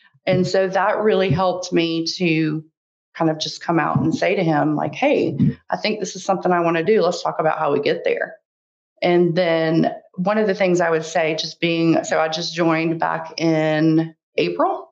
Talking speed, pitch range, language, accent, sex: 210 wpm, 160-205 Hz, English, American, female